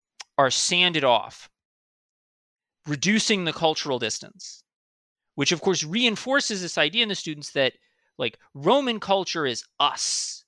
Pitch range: 145-215 Hz